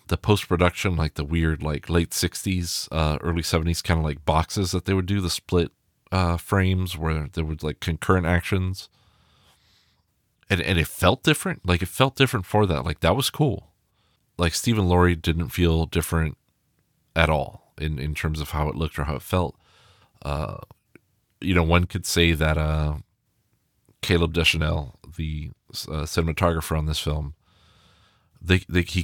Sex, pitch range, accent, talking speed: male, 80-100 Hz, American, 165 wpm